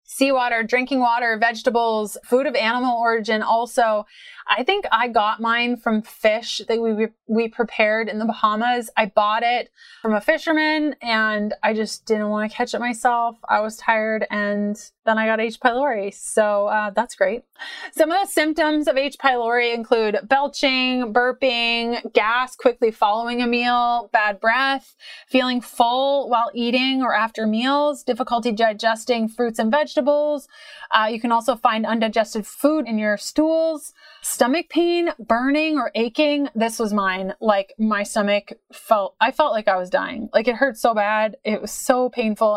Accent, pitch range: American, 220-265 Hz